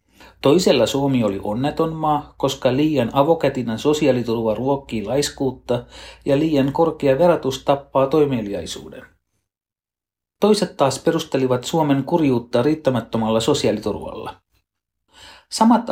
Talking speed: 95 wpm